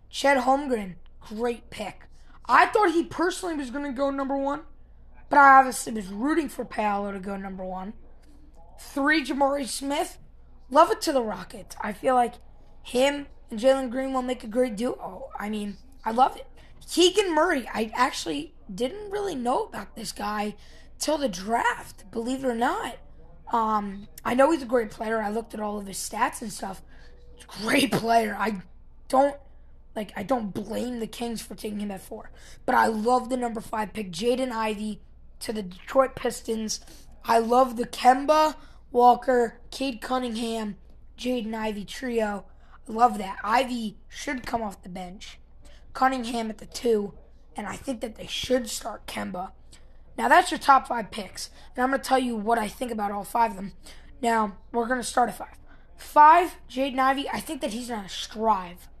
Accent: American